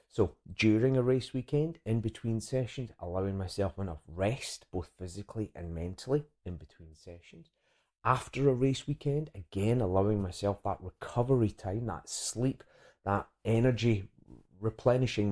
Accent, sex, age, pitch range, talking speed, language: British, male, 30-49, 85-120 Hz, 135 wpm, English